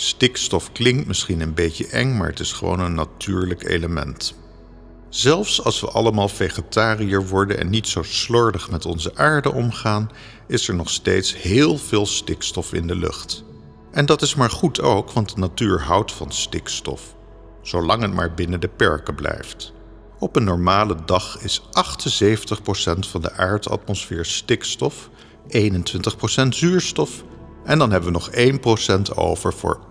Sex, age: male, 50-69